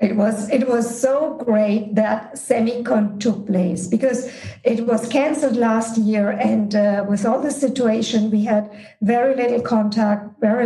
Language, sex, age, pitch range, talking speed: English, female, 50-69, 215-255 Hz, 160 wpm